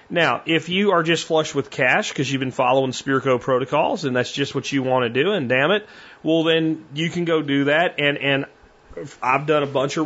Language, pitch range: English, 130-155 Hz